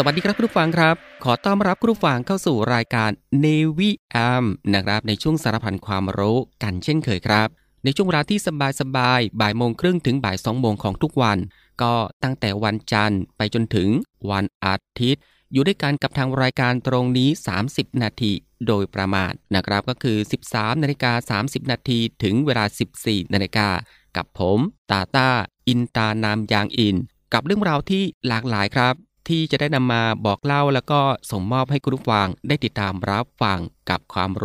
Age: 20-39